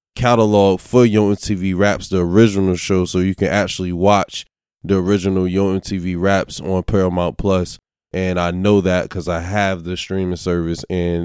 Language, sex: English, male